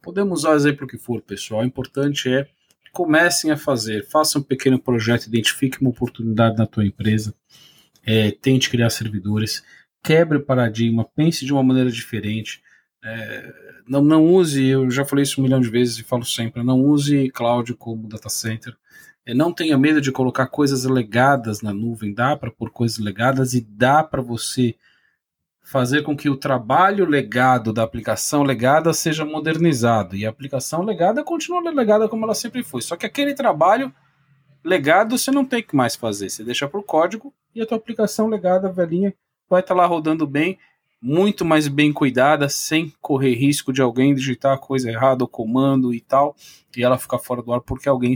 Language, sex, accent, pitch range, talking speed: Portuguese, male, Brazilian, 120-155 Hz, 185 wpm